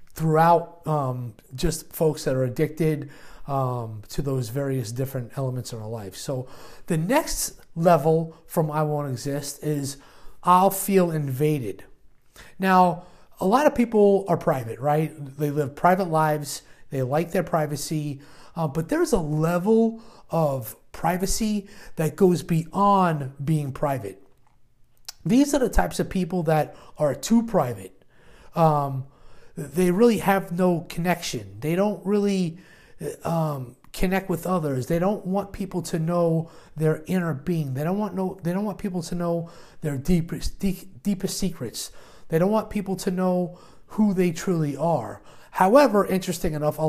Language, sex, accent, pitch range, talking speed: English, male, American, 145-185 Hz, 155 wpm